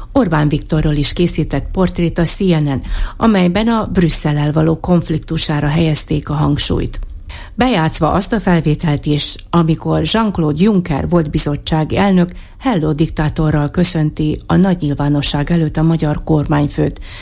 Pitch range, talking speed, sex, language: 145-180 Hz, 125 wpm, female, Hungarian